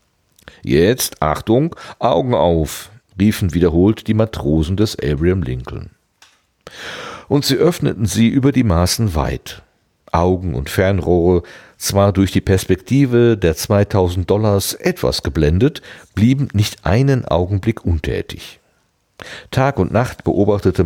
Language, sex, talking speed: German, male, 115 wpm